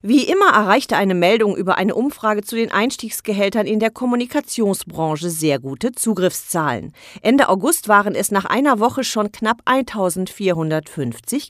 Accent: German